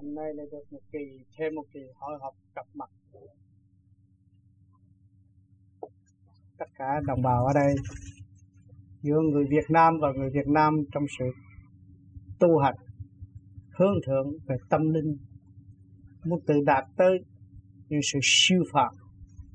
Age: 20-39